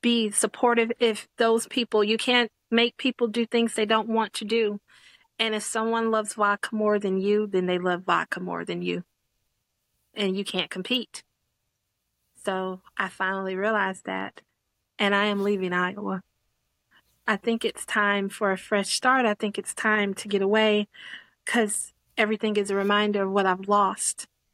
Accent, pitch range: American, 195-225 Hz